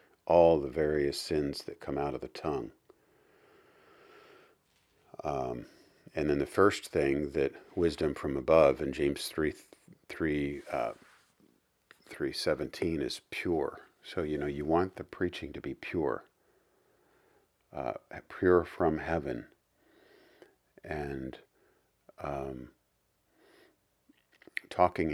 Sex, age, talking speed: male, 50-69, 105 wpm